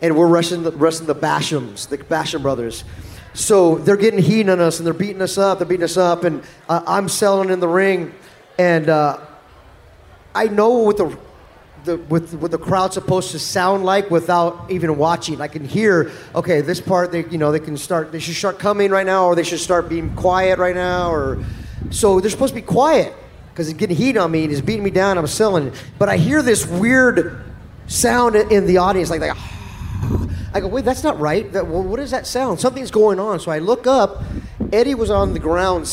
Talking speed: 220 wpm